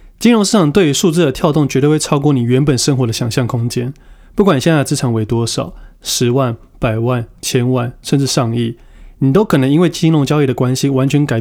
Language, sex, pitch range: Chinese, male, 125-155 Hz